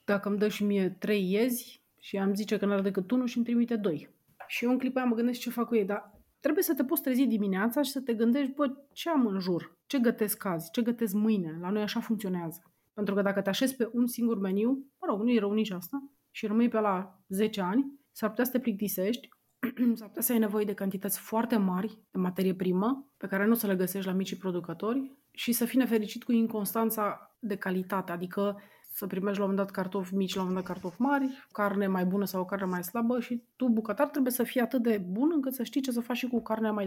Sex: female